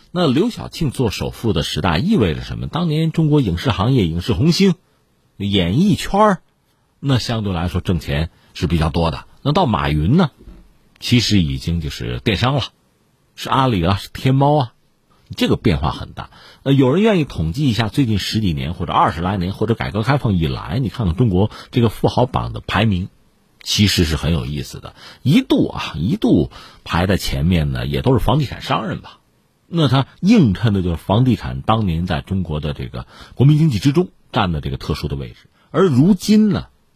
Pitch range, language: 85-135 Hz, Chinese